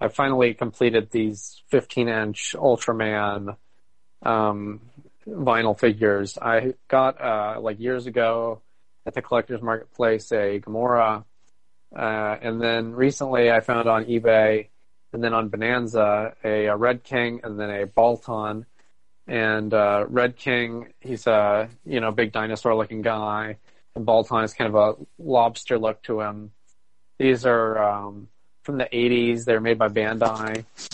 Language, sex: English, male